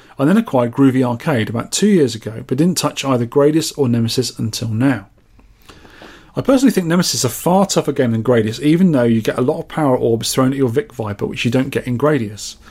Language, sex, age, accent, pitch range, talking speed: English, male, 30-49, British, 120-155 Hz, 225 wpm